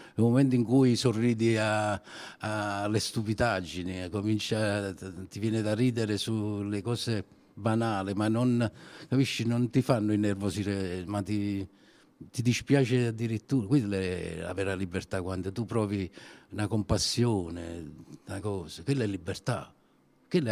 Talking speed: 125 wpm